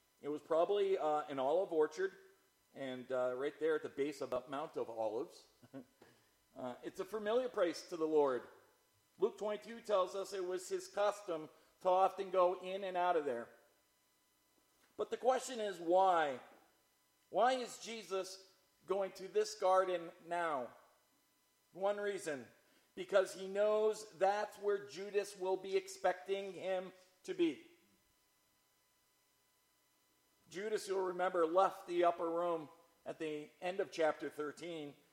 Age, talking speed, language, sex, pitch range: 50-69, 140 wpm, English, male, 160-210 Hz